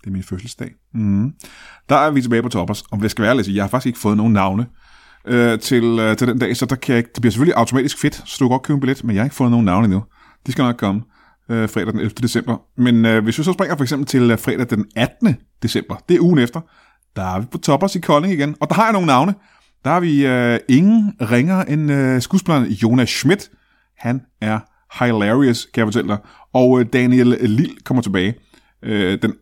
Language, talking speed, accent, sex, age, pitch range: Danish, 240 wpm, native, male, 30-49, 110-145 Hz